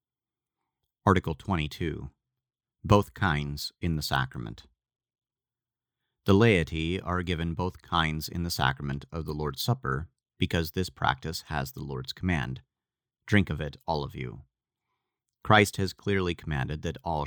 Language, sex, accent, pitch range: English, male, American, 75-90 Hz